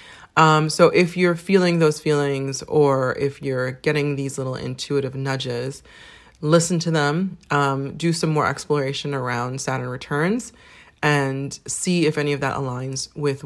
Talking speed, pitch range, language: 150 wpm, 130-150 Hz, English